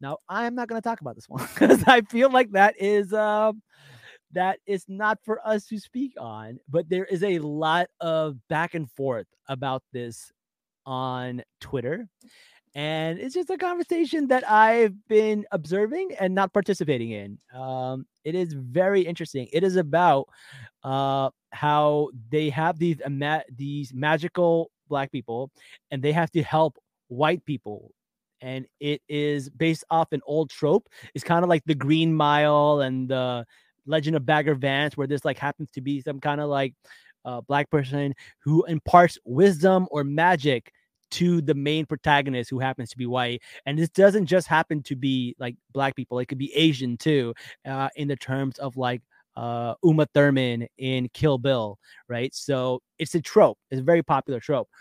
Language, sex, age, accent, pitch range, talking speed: English, male, 30-49, American, 135-175 Hz, 175 wpm